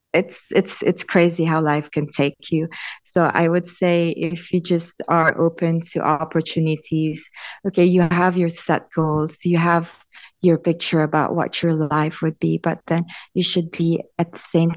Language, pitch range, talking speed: English, 165-195 Hz, 180 wpm